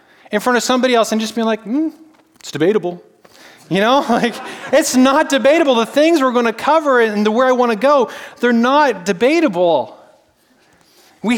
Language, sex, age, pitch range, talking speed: English, male, 30-49, 205-255 Hz, 175 wpm